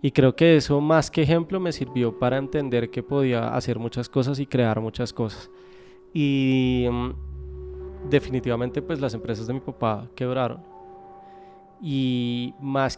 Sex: male